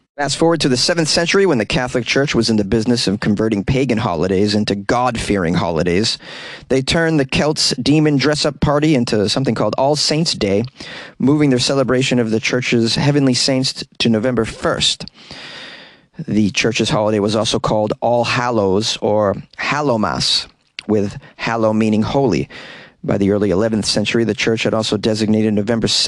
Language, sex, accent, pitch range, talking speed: English, male, American, 110-150 Hz, 160 wpm